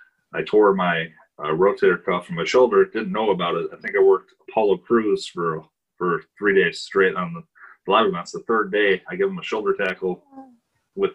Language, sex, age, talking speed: English, male, 30-49, 205 wpm